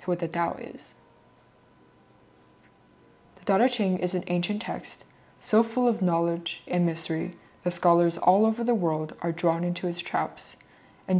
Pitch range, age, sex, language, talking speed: 170-205 Hz, 20-39, female, English, 160 wpm